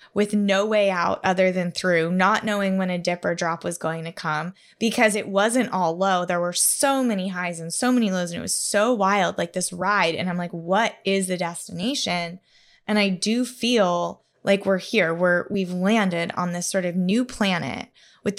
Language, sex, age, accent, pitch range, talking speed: English, female, 20-39, American, 180-205 Hz, 210 wpm